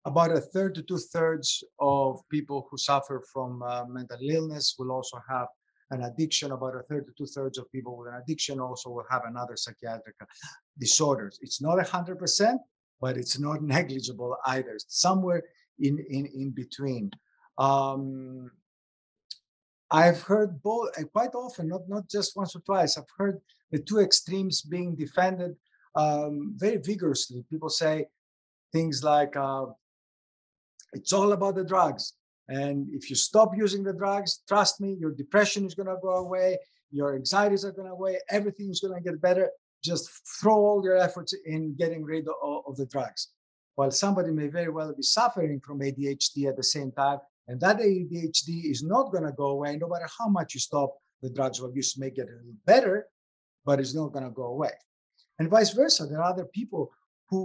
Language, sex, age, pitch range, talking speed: English, male, 50-69, 135-185 Hz, 180 wpm